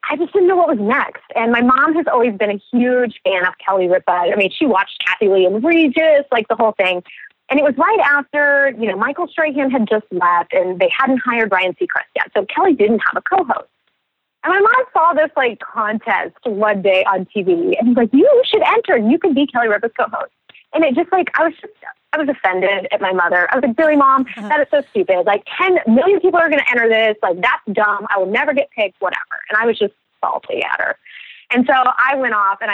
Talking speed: 245 wpm